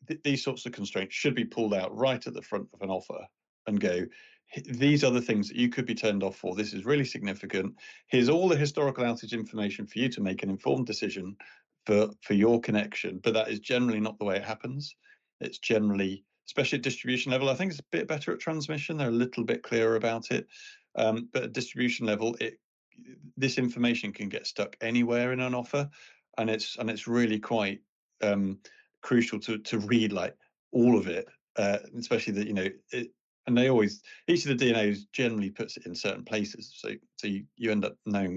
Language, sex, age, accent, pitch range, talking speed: English, male, 40-59, British, 105-125 Hz, 210 wpm